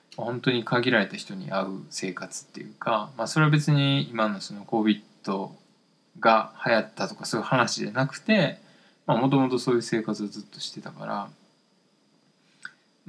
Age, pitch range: 20-39, 105-150 Hz